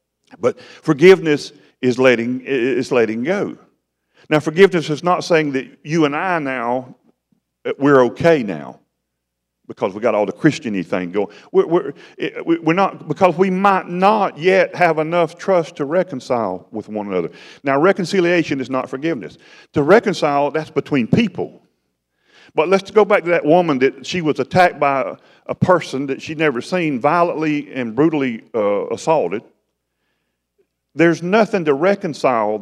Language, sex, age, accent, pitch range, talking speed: English, male, 40-59, American, 125-180 Hz, 155 wpm